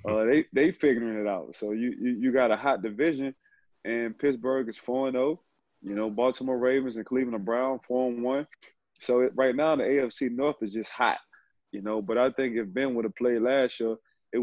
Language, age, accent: English, 20-39, American